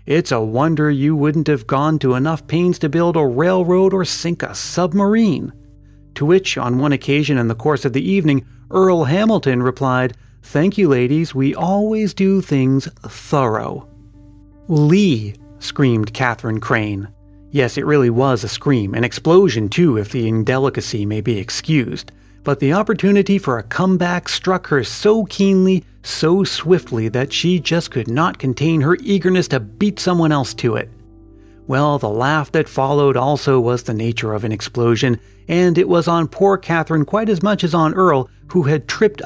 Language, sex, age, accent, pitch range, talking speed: English, male, 30-49, American, 120-170 Hz, 170 wpm